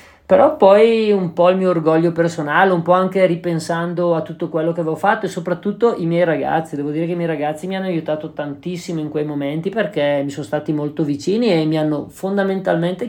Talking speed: 210 wpm